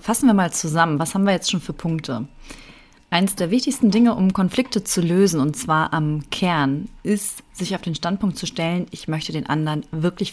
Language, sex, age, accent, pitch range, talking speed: German, female, 30-49, German, 165-215 Hz, 205 wpm